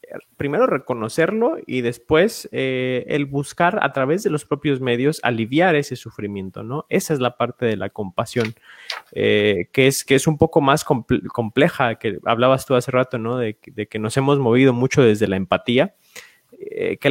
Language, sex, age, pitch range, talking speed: Spanish, male, 20-39, 115-145 Hz, 180 wpm